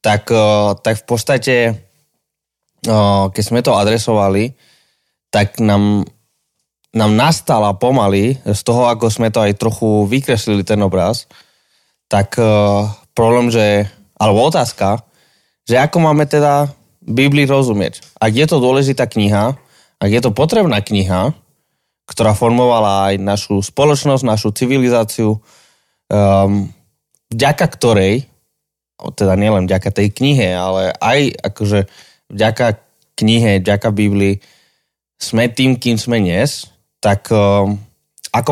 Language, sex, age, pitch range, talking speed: Slovak, male, 20-39, 100-125 Hz, 110 wpm